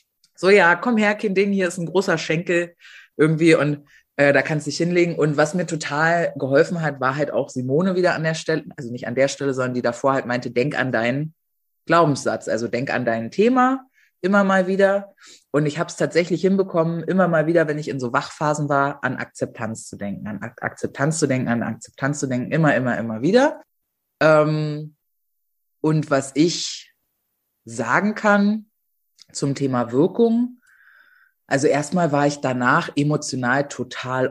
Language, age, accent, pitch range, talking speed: German, 20-39, German, 125-165 Hz, 180 wpm